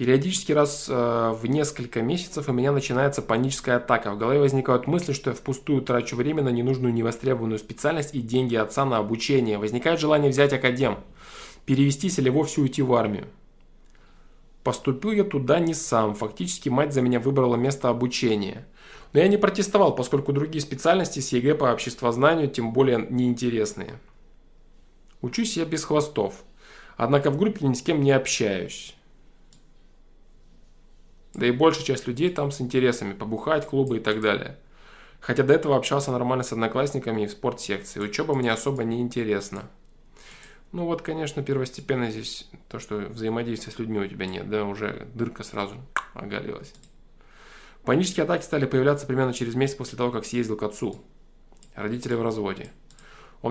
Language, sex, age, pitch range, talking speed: Russian, male, 20-39, 115-145 Hz, 155 wpm